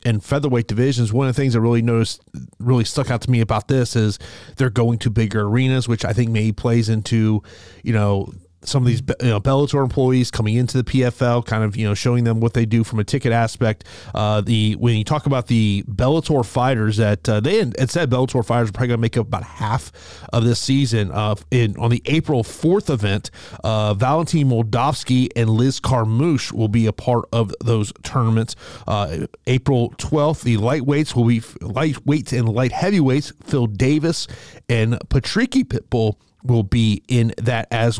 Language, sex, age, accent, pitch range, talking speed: English, male, 30-49, American, 110-135 Hz, 195 wpm